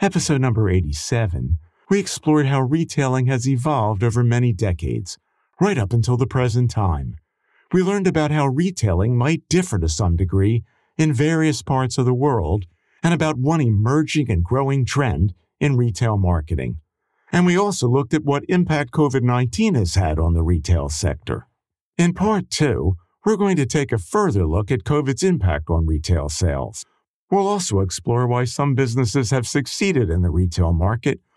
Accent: American